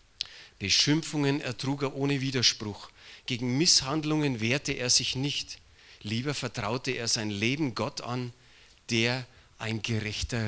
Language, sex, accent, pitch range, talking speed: German, male, German, 110-145 Hz, 125 wpm